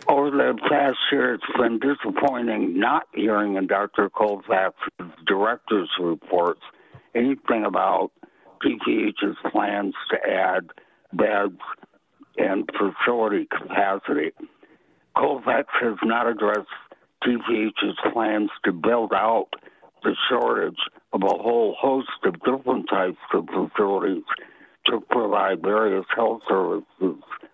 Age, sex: 60-79, male